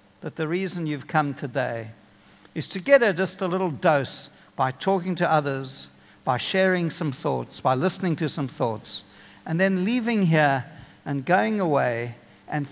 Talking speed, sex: 165 wpm, male